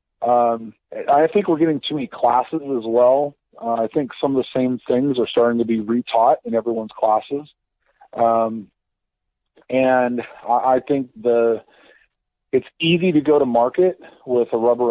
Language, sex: English, male